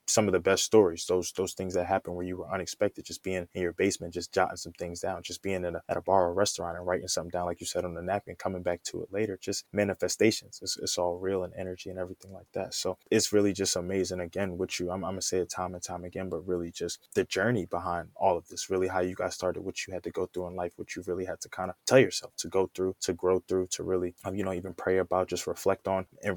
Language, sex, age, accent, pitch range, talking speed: English, male, 20-39, American, 90-95 Hz, 290 wpm